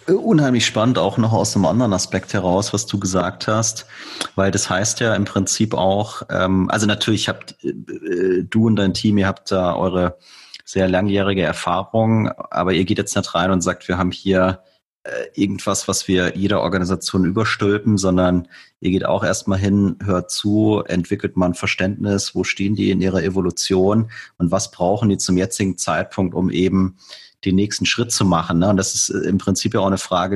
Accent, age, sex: German, 30-49, male